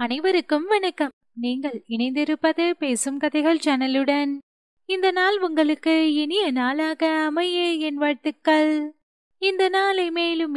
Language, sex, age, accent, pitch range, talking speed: Tamil, female, 30-49, native, 285-375 Hz, 100 wpm